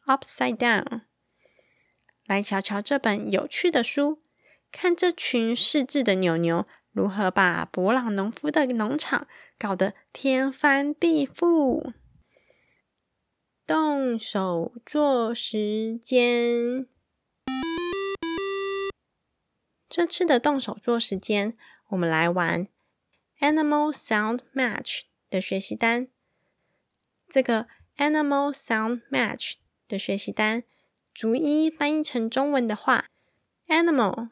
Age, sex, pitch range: 20-39, female, 220-295 Hz